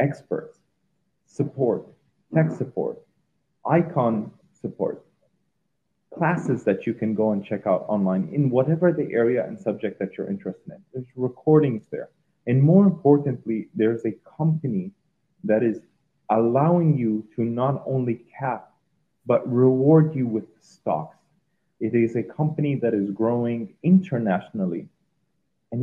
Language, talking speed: English, 130 wpm